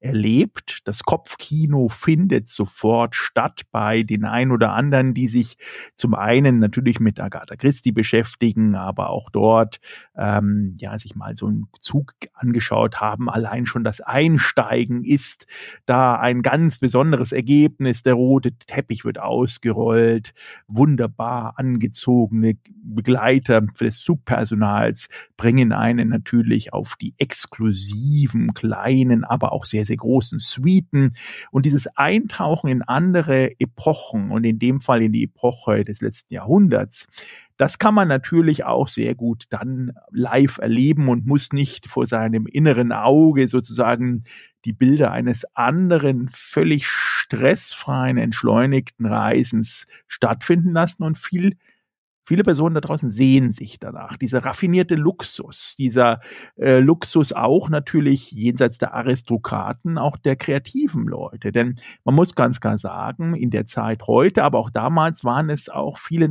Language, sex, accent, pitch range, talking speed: German, male, German, 115-145 Hz, 135 wpm